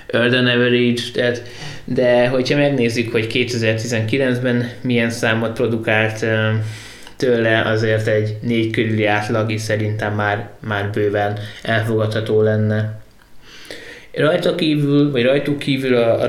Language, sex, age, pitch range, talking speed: Hungarian, male, 20-39, 110-125 Hz, 105 wpm